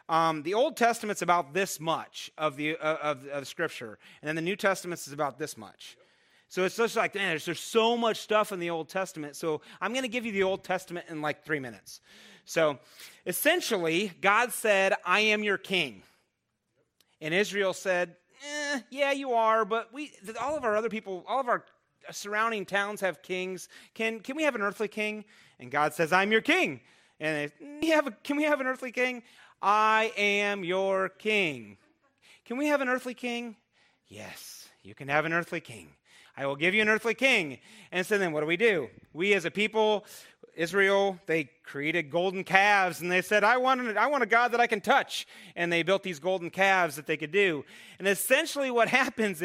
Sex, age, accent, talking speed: male, 30-49, American, 205 wpm